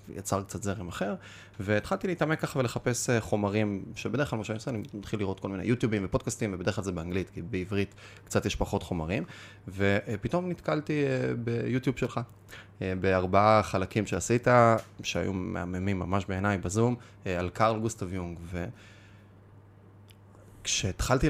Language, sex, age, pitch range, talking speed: Hebrew, male, 20-39, 100-120 Hz, 135 wpm